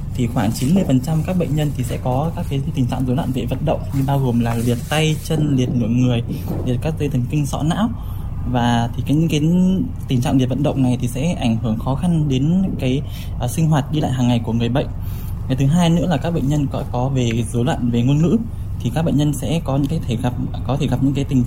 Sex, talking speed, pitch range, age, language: male, 270 wpm, 120-145 Hz, 10-29, Vietnamese